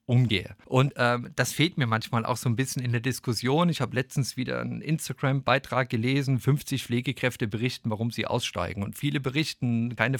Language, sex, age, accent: German, male, 40-59, German